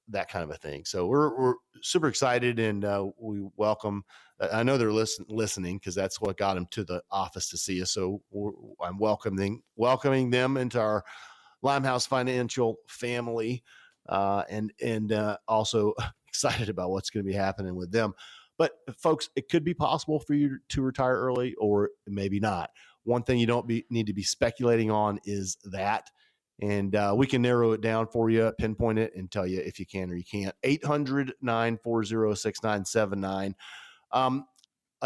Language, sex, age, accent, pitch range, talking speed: English, male, 40-59, American, 100-130 Hz, 190 wpm